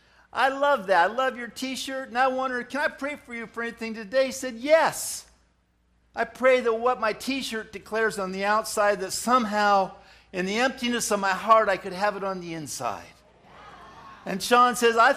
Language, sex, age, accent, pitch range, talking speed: English, male, 50-69, American, 190-240 Hz, 200 wpm